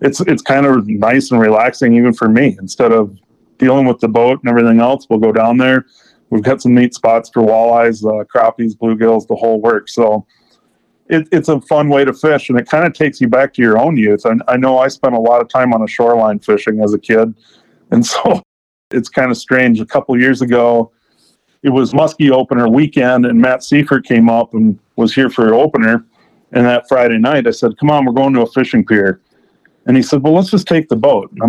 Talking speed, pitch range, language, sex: 230 wpm, 115-145 Hz, English, male